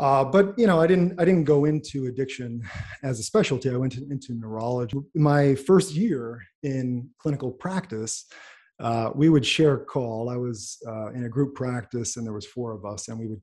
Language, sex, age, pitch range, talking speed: English, male, 30-49, 115-150 Hz, 210 wpm